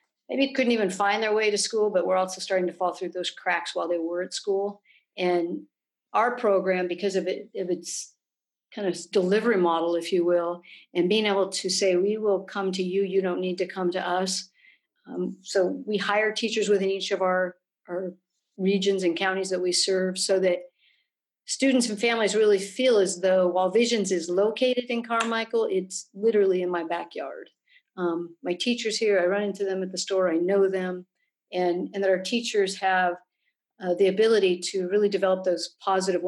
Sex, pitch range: female, 180-200 Hz